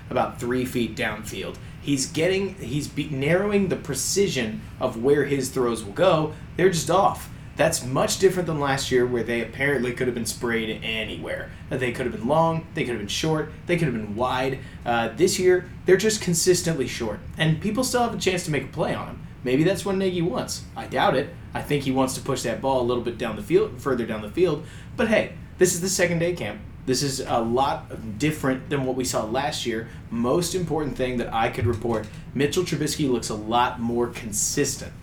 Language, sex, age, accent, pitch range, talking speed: English, male, 30-49, American, 120-160 Hz, 215 wpm